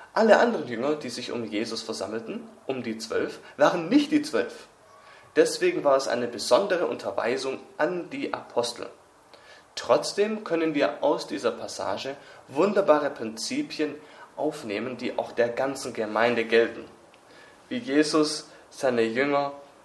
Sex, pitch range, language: male, 115-165 Hz, English